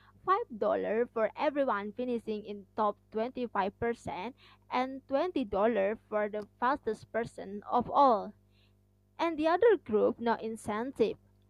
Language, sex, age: English, female, 20-39